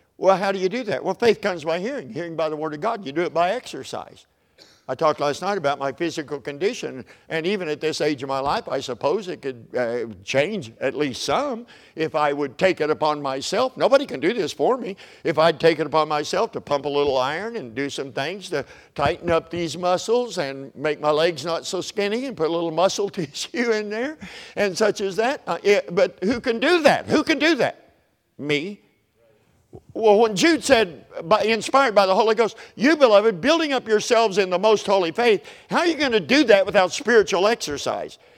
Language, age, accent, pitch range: English, 60-79, American, 170-235 Hz